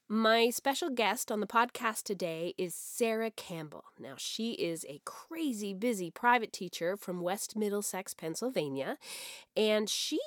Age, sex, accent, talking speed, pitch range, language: 30-49, female, American, 140 wpm, 180-270 Hz, English